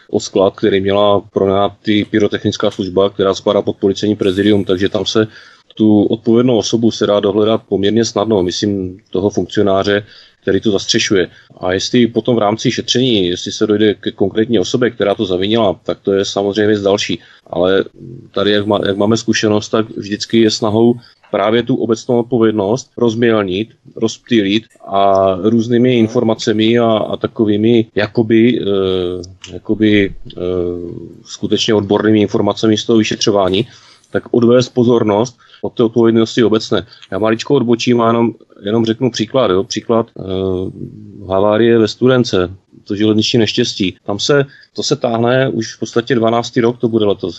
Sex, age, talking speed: male, 30-49, 150 wpm